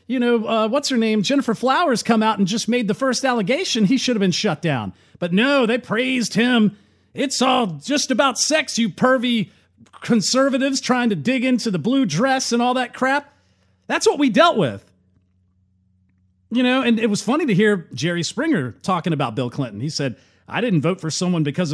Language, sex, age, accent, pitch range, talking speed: English, male, 40-59, American, 165-245 Hz, 200 wpm